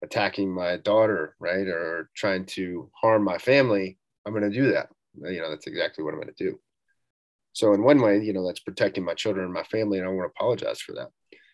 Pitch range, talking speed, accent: 100-120 Hz, 235 wpm, American